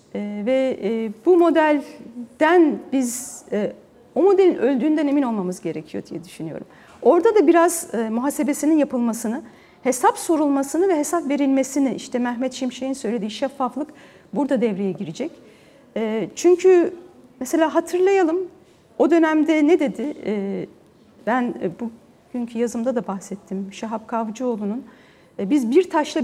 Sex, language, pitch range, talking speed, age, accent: female, Turkish, 235-290 Hz, 120 wpm, 40-59, native